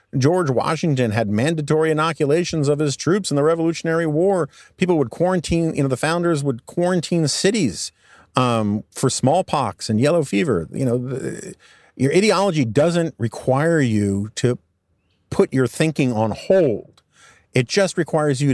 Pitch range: 110-140 Hz